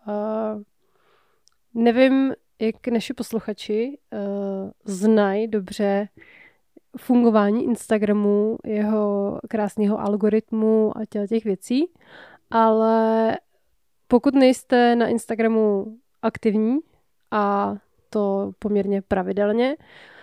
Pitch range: 205-235 Hz